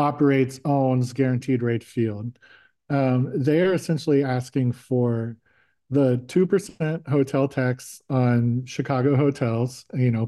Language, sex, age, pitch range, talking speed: English, male, 40-59, 120-140 Hz, 110 wpm